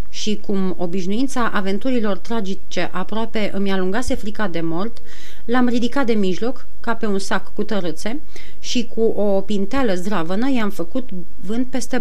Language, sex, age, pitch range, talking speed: Romanian, female, 30-49, 195-245 Hz, 150 wpm